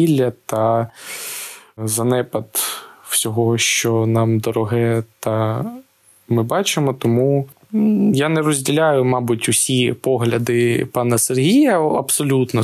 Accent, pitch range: native, 115-135 Hz